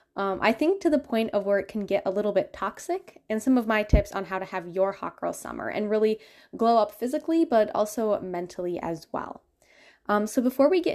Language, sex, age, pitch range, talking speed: English, female, 10-29, 195-265 Hz, 235 wpm